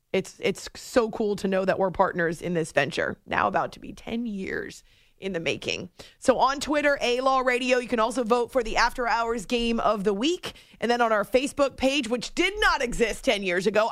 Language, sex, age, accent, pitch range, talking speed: English, female, 30-49, American, 205-265 Hz, 220 wpm